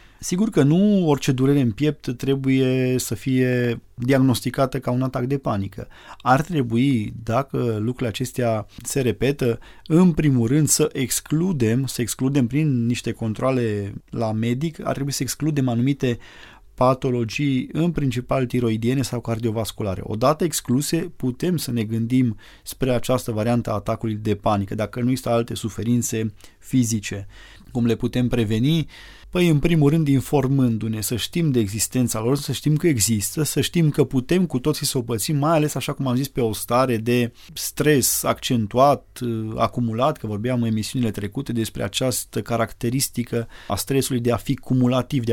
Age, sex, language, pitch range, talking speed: 20-39, male, Romanian, 115-135 Hz, 160 wpm